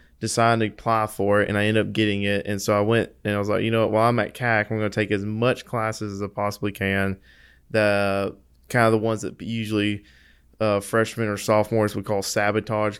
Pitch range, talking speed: 100-110 Hz, 235 wpm